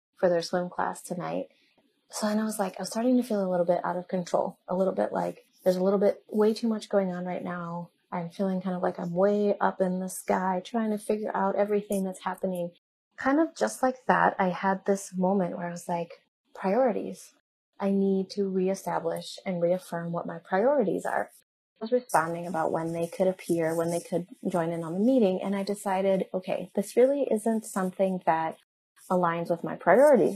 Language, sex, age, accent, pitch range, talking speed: English, female, 30-49, American, 175-205 Hz, 210 wpm